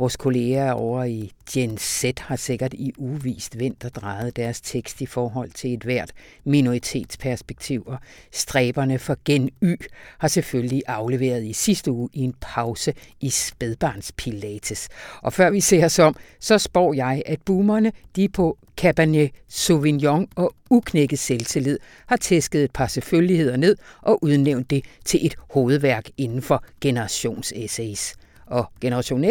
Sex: female